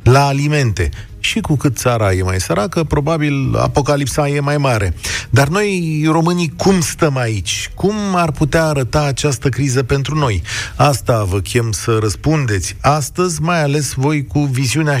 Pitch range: 105-145 Hz